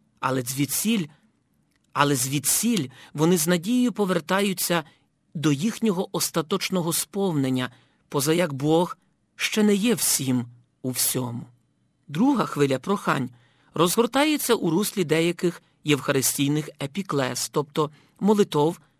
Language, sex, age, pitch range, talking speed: Ukrainian, male, 50-69, 135-185 Hz, 100 wpm